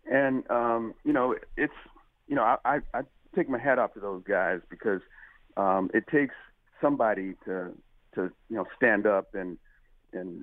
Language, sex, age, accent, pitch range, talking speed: English, male, 50-69, American, 100-135 Hz, 175 wpm